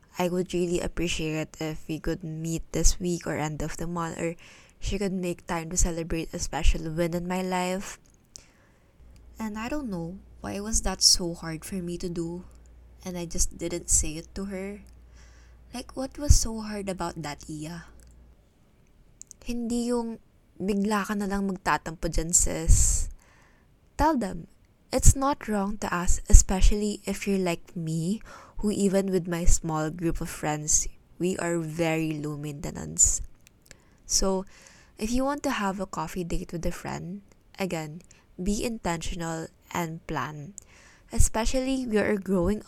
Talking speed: 155 wpm